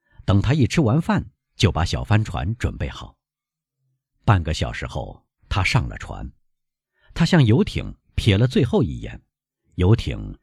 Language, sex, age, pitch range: Chinese, male, 50-69, 95-140 Hz